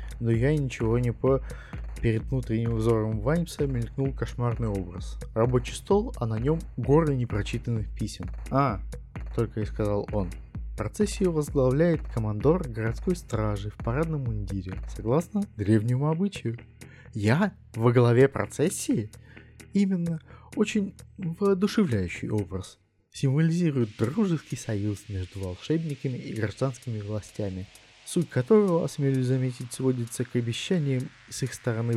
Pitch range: 105-145 Hz